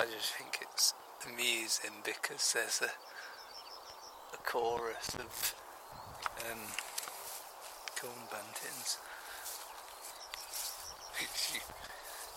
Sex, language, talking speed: male, English, 75 wpm